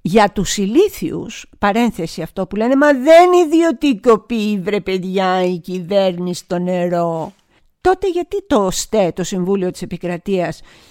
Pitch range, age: 185-255 Hz, 50-69